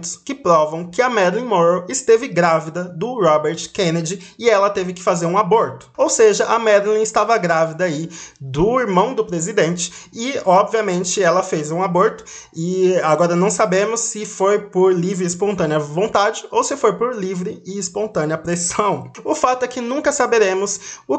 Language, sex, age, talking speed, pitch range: Portuguese, male, 20-39, 175 wpm, 170-220 Hz